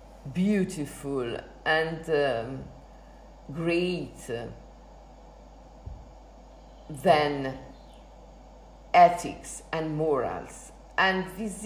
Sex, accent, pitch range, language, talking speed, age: female, native, 160-220 Hz, Italian, 50 wpm, 50-69